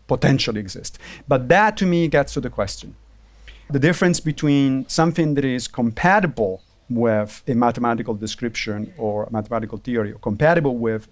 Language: English